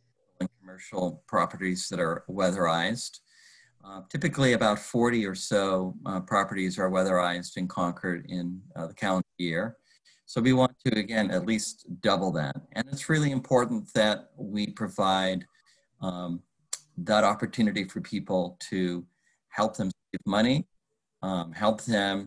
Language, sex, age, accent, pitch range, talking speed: English, male, 40-59, American, 90-115 Hz, 135 wpm